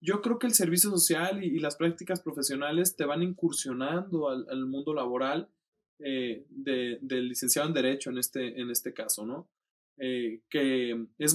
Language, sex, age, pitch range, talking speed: Spanish, male, 20-39, 115-140 Hz, 160 wpm